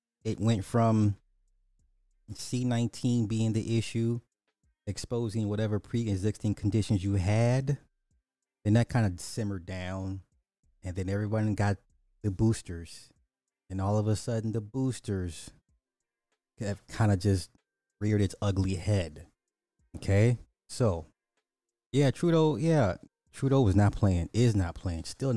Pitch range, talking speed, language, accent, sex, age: 90-115 Hz, 125 wpm, English, American, male, 20-39